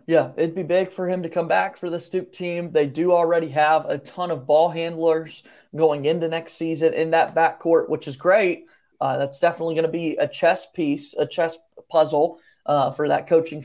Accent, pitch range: American, 155-185 Hz